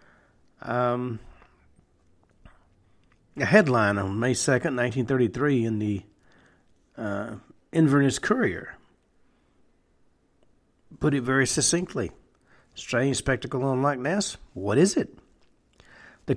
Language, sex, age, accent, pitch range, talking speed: English, male, 60-79, American, 115-150 Hz, 90 wpm